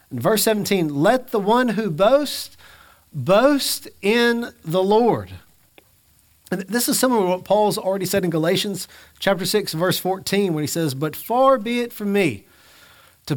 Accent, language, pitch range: American, English, 140-200 Hz